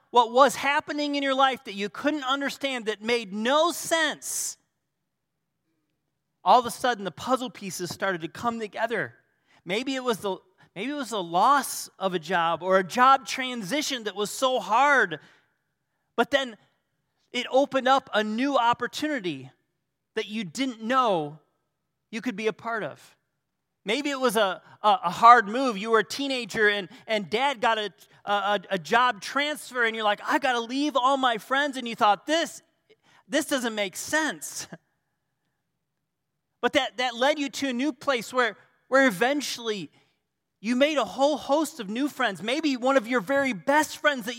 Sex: male